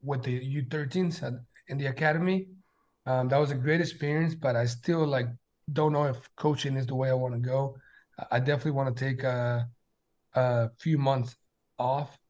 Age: 30-49